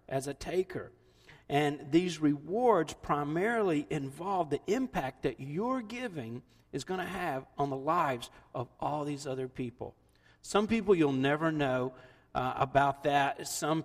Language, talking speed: English, 145 wpm